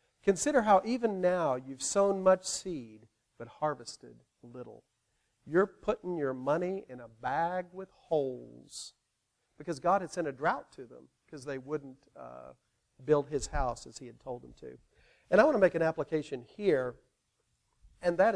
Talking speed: 165 wpm